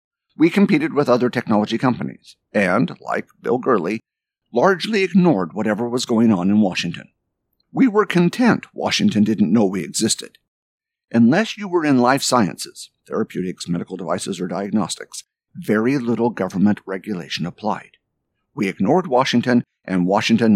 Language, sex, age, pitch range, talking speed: English, male, 50-69, 100-145 Hz, 135 wpm